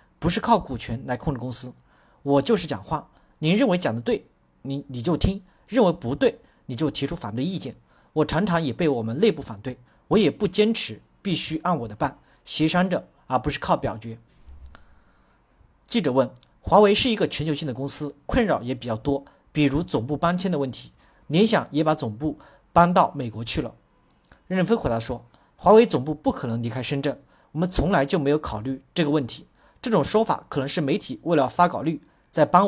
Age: 40-59